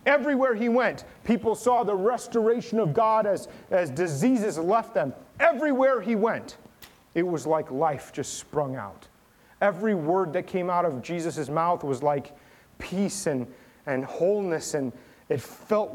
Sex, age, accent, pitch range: male, 30-49, American, 135-175 Hz